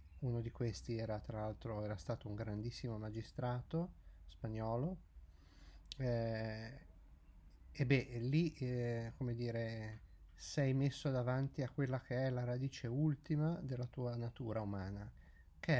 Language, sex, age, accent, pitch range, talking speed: Italian, male, 30-49, native, 100-135 Hz, 130 wpm